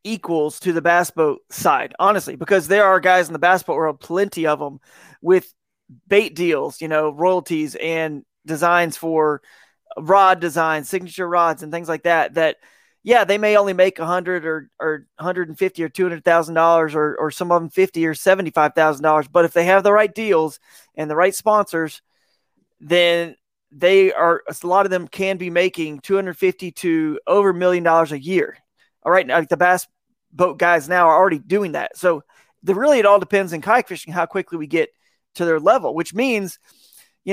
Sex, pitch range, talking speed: male, 160-195 Hz, 190 wpm